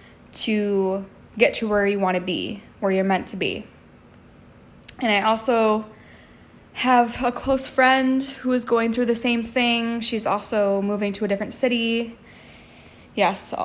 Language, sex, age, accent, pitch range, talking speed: English, female, 10-29, American, 205-240 Hz, 155 wpm